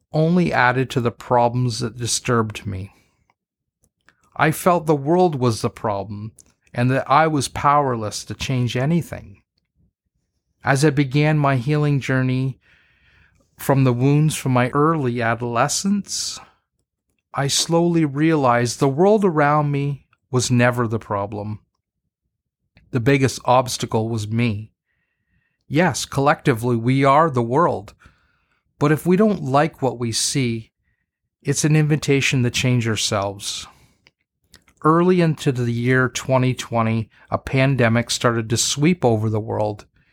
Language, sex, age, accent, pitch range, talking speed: English, male, 40-59, American, 115-145 Hz, 125 wpm